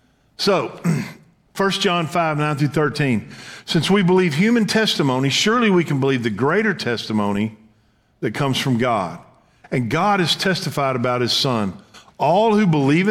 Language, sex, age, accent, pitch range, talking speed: English, male, 50-69, American, 125-180 Hz, 150 wpm